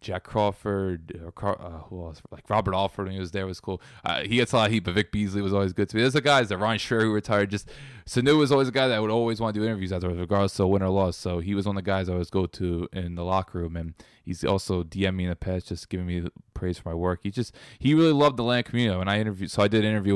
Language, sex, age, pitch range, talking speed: English, male, 20-39, 85-105 Hz, 310 wpm